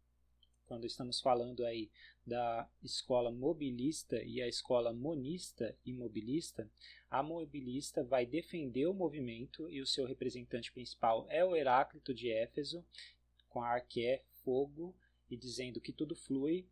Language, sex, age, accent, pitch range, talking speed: Portuguese, male, 20-39, Brazilian, 120-160 Hz, 135 wpm